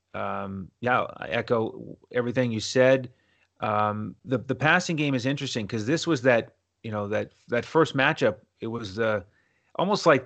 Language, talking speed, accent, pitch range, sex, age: English, 175 wpm, American, 105-130 Hz, male, 30-49